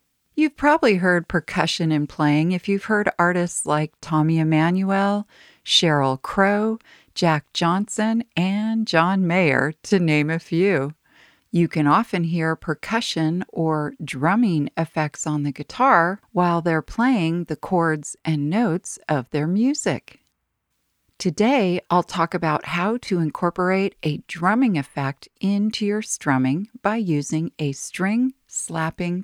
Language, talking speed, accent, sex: English, 130 wpm, American, female